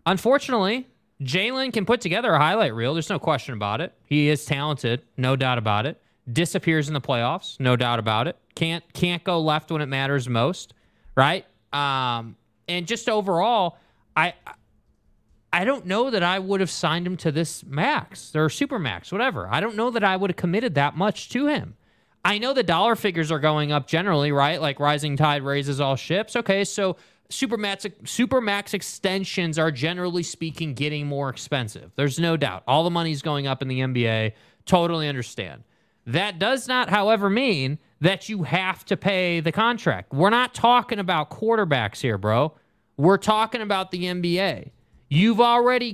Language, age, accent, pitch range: English, 20-39, American, 145-200 Hz